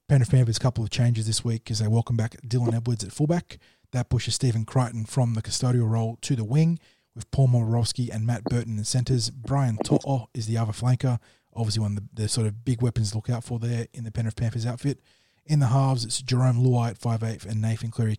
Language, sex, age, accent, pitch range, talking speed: English, male, 20-39, Australian, 110-125 Hz, 240 wpm